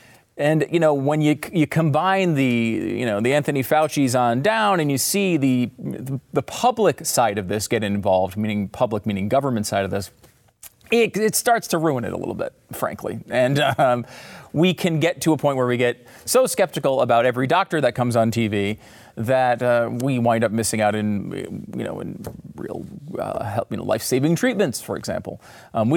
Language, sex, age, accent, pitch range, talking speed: English, male, 30-49, American, 115-155 Hz, 195 wpm